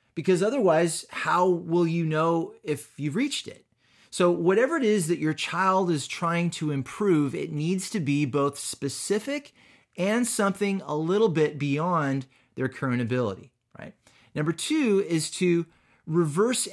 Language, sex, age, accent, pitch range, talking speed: English, male, 30-49, American, 135-185 Hz, 150 wpm